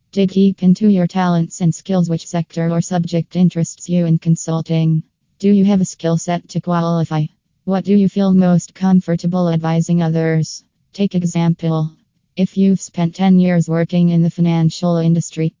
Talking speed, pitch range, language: 165 wpm, 165-180 Hz, English